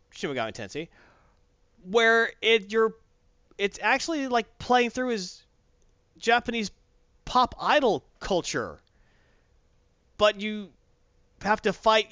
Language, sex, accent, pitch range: English, male, American, 135-215 Hz